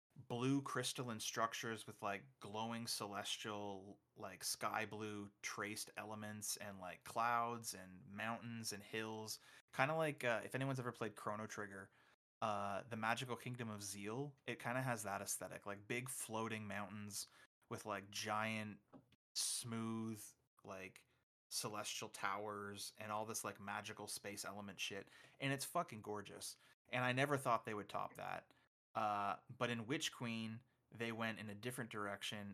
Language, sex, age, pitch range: English, male, 20-39, 100-115 Hz